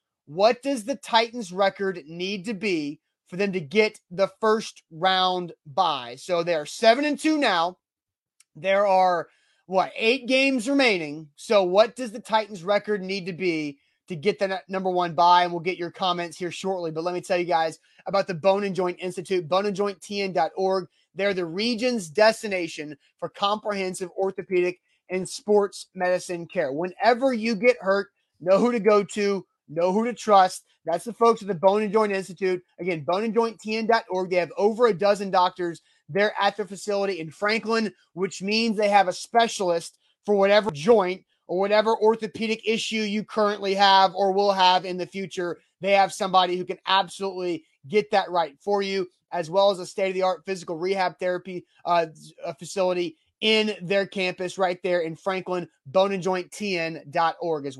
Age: 30-49